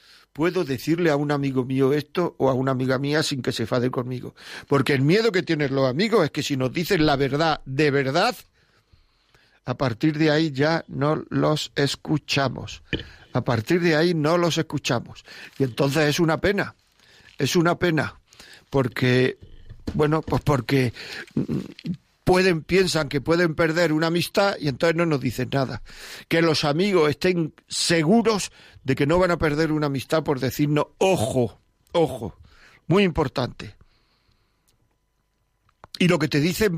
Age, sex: 50-69, male